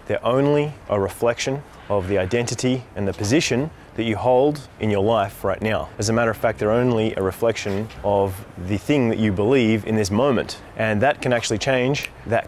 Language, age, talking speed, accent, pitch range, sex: English, 20-39, 200 wpm, Australian, 110-130 Hz, male